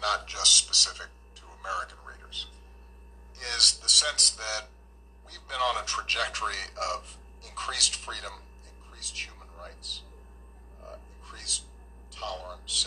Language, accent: English, American